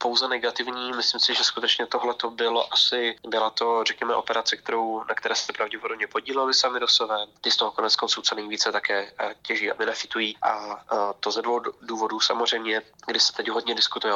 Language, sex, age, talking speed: Slovak, male, 20-39, 180 wpm